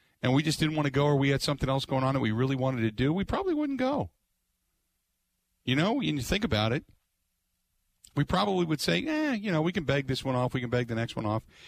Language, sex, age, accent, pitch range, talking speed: English, male, 50-69, American, 110-145 Hz, 260 wpm